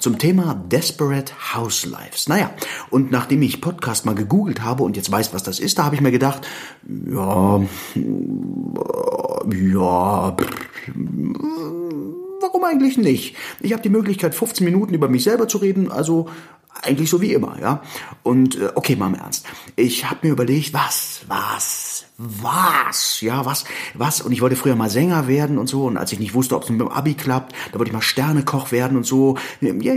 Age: 30-49